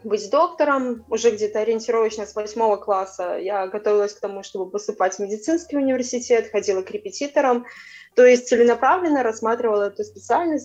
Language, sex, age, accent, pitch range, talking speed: Russian, female, 20-39, native, 200-245 Hz, 145 wpm